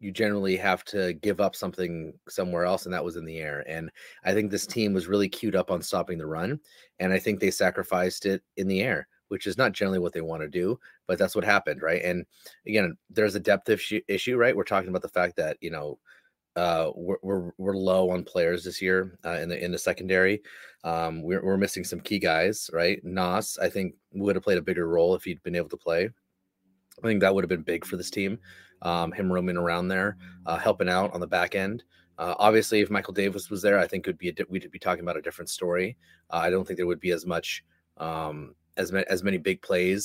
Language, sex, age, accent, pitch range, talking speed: English, male, 30-49, American, 90-105 Hz, 245 wpm